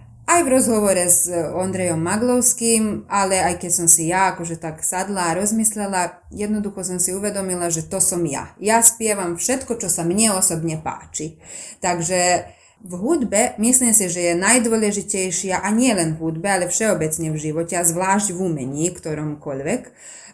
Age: 20-39